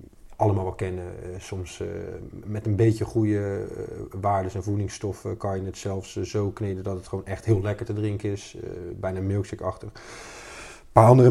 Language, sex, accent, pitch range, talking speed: Dutch, male, Dutch, 95-110 Hz, 185 wpm